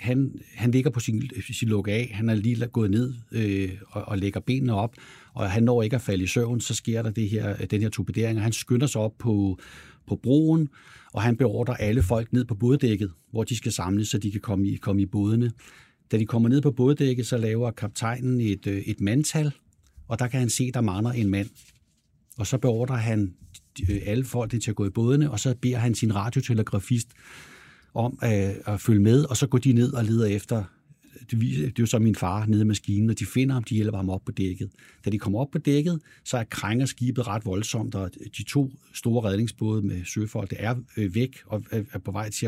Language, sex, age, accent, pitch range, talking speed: Danish, male, 60-79, native, 100-125 Hz, 225 wpm